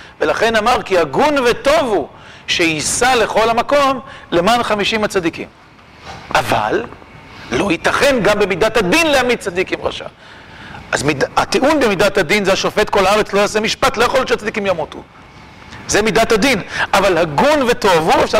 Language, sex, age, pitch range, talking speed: Hebrew, male, 40-59, 180-245 Hz, 150 wpm